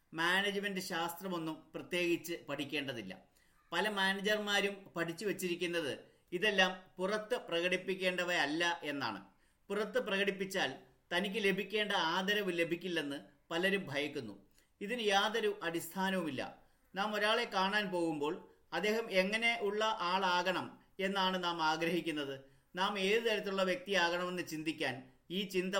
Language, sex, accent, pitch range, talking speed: Malayalam, male, native, 170-205 Hz, 95 wpm